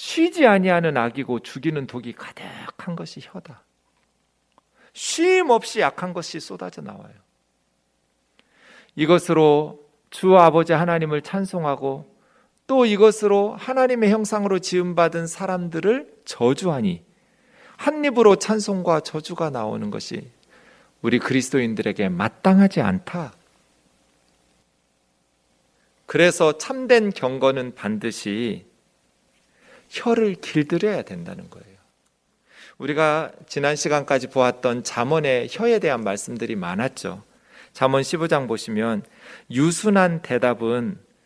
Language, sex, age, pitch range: Korean, male, 40-59, 120-195 Hz